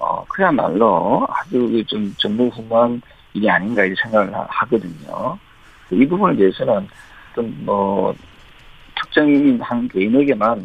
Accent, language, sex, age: native, Korean, male, 40-59